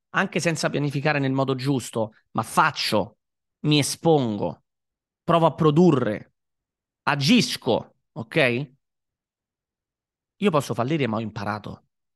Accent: native